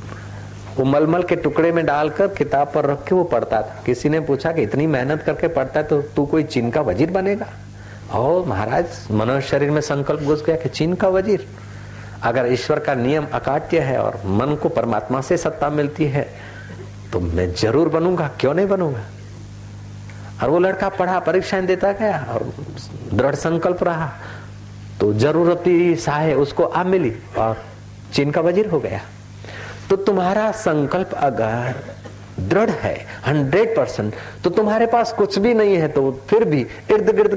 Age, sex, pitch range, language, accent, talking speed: 50-69, male, 110-175 Hz, Hindi, native, 135 wpm